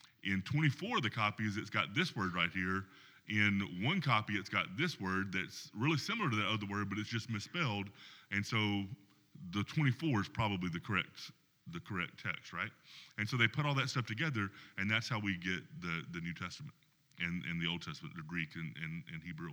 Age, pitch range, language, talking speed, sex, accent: 30-49, 95-125 Hz, English, 210 wpm, male, American